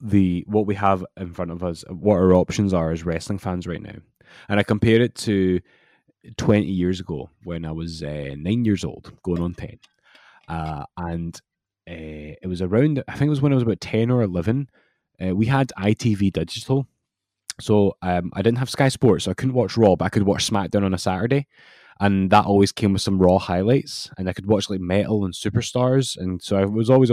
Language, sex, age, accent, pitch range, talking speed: English, male, 20-39, British, 90-110 Hz, 215 wpm